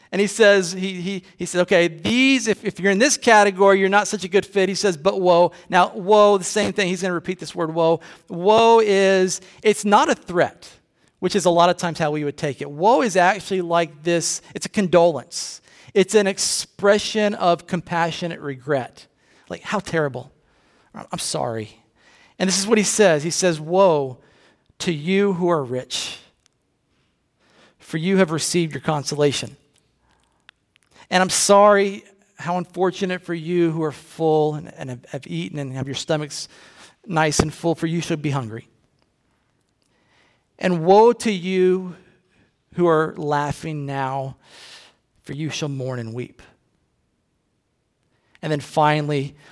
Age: 40-59